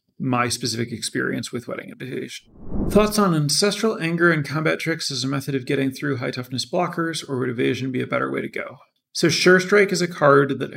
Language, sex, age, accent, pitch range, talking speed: English, male, 30-49, American, 120-145 Hz, 210 wpm